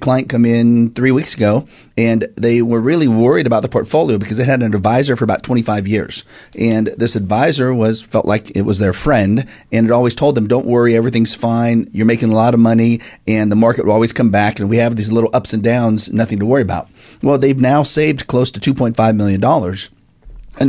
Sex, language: male, English